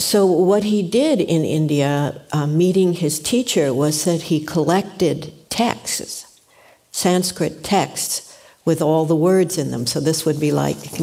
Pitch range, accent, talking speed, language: 150-175 Hz, American, 160 wpm, English